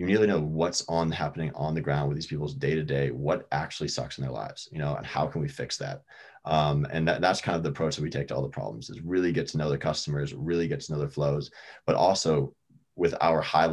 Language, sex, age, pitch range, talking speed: English, male, 20-39, 70-80 Hz, 270 wpm